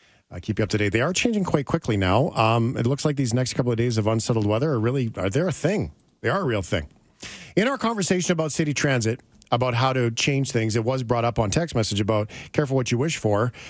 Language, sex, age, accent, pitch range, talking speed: English, male, 40-59, American, 110-140 Hz, 265 wpm